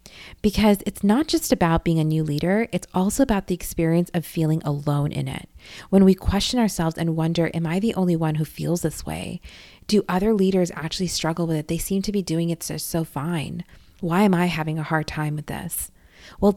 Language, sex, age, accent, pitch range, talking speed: English, female, 30-49, American, 160-185 Hz, 215 wpm